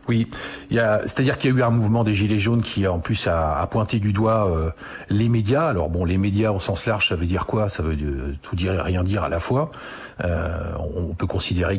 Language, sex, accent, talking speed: French, male, French, 265 wpm